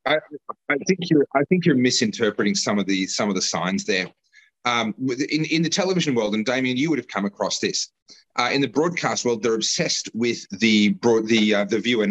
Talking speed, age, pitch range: 220 wpm, 30-49, 105-150 Hz